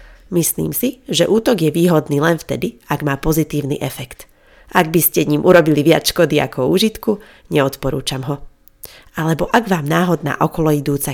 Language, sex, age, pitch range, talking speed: Slovak, female, 30-49, 140-180 Hz, 150 wpm